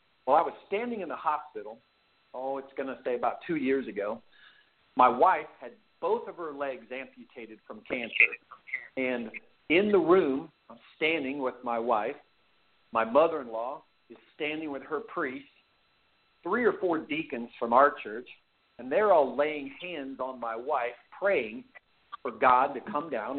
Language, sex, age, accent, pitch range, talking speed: English, male, 50-69, American, 120-165 Hz, 160 wpm